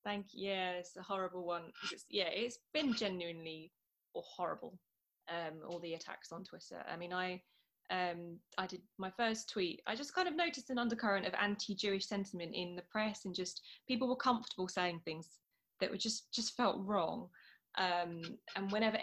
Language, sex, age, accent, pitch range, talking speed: English, female, 20-39, British, 180-220 Hz, 180 wpm